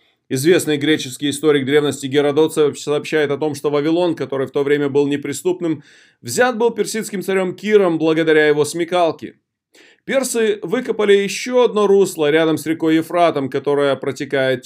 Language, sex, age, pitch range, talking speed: Russian, male, 20-39, 145-175 Hz, 145 wpm